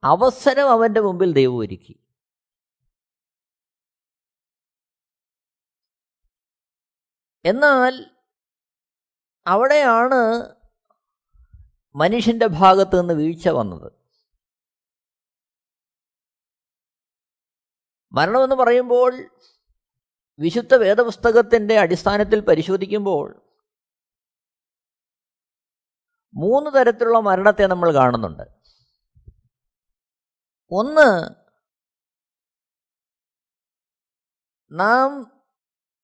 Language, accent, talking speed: Malayalam, native, 40 wpm